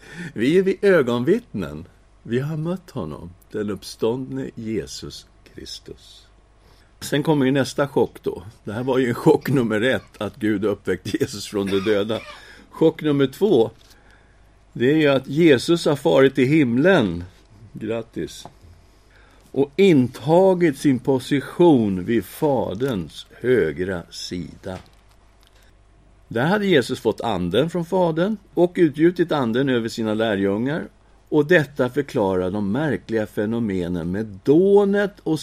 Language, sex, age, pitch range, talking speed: Swedish, male, 60-79, 100-150 Hz, 130 wpm